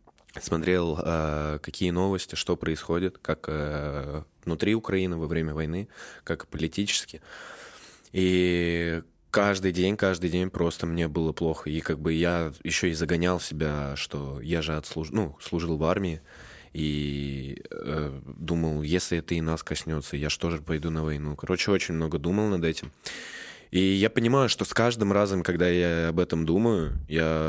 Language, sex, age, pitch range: Russian, male, 20-39, 75-90 Hz